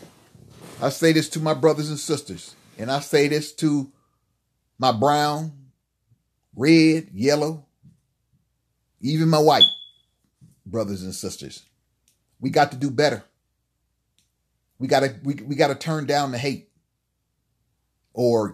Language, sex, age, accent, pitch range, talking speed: English, male, 40-59, American, 115-155 Hz, 125 wpm